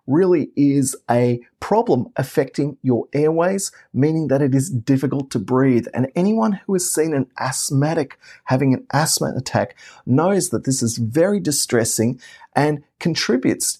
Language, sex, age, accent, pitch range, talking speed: English, male, 30-49, Australian, 120-160 Hz, 145 wpm